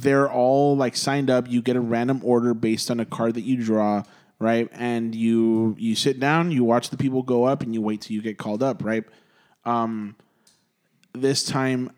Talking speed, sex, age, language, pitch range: 205 wpm, male, 20-39, English, 120-140 Hz